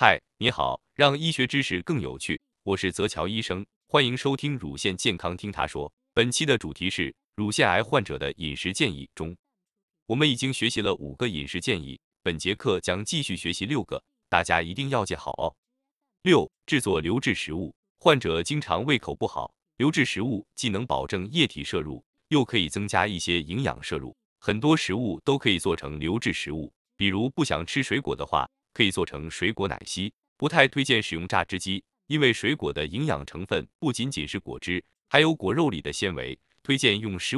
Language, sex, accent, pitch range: Chinese, male, native, 90-140 Hz